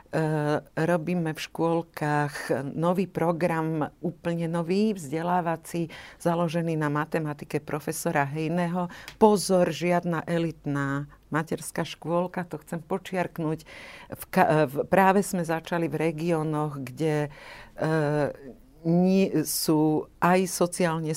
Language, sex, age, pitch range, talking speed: Slovak, female, 50-69, 150-175 Hz, 85 wpm